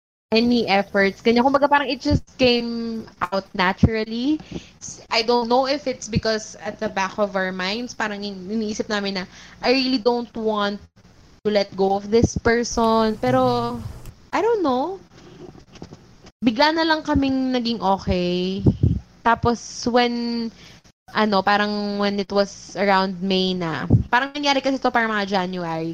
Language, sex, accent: English, female, Filipino